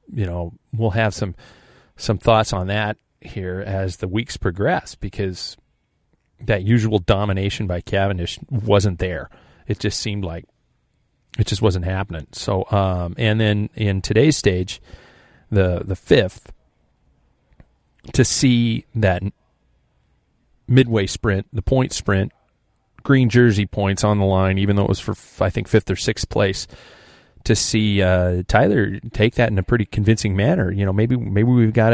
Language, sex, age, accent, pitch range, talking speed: English, male, 40-59, American, 100-125 Hz, 155 wpm